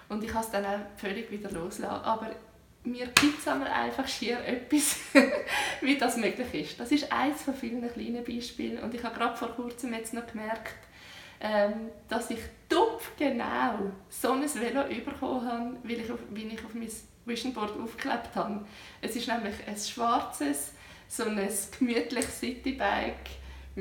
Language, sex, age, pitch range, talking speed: German, female, 20-39, 205-255 Hz, 165 wpm